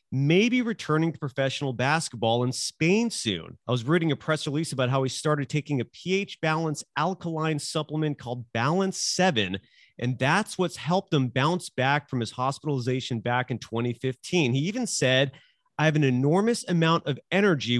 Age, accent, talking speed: 30-49, American, 170 wpm